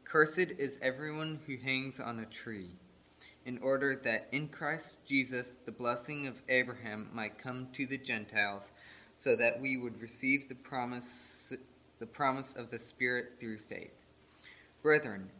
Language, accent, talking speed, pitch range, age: English, American, 150 wpm, 110-135 Hz, 20-39